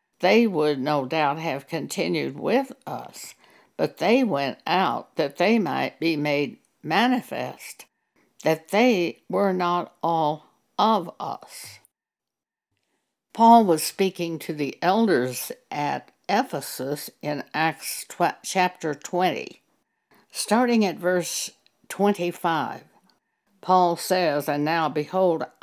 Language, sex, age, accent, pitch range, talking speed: English, female, 60-79, American, 155-200 Hz, 110 wpm